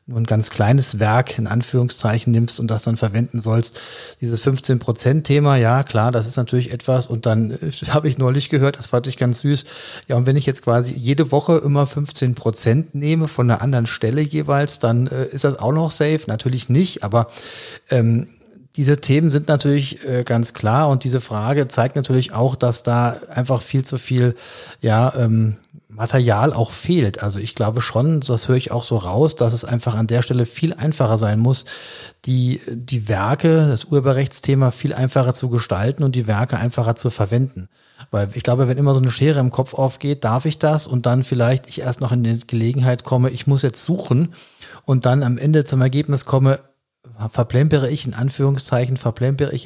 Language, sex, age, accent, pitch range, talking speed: German, male, 40-59, German, 120-140 Hz, 195 wpm